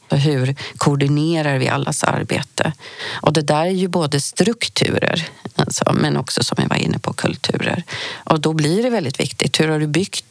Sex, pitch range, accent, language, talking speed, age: female, 145-175 Hz, native, Swedish, 175 wpm, 40-59